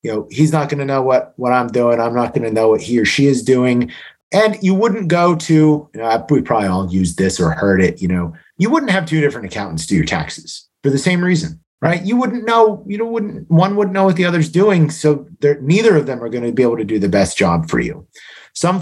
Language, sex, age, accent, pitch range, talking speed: English, male, 30-49, American, 125-180 Hz, 260 wpm